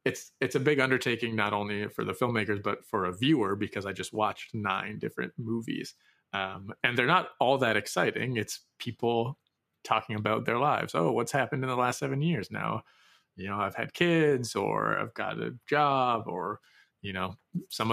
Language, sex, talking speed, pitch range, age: English, male, 190 wpm, 105-140 Hz, 30-49